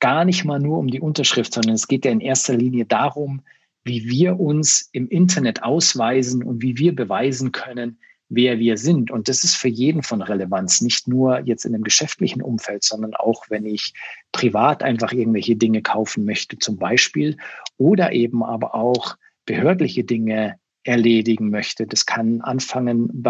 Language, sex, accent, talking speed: German, male, German, 175 wpm